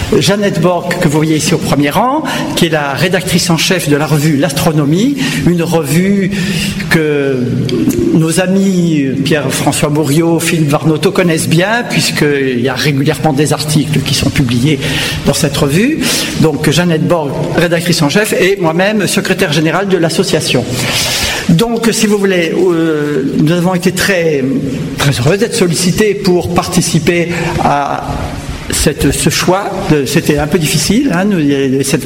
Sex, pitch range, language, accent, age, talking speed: male, 150-190 Hz, French, French, 60-79, 150 wpm